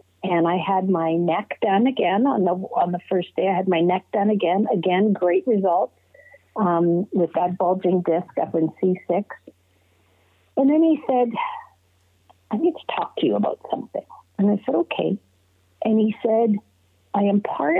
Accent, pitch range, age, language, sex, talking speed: American, 170-215 Hz, 50-69, English, female, 175 wpm